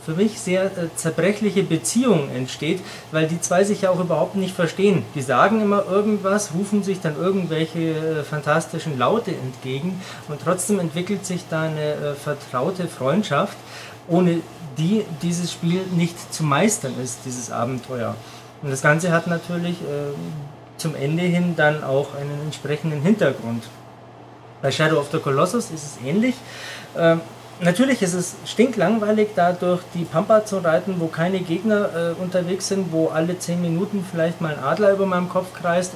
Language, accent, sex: German, German, male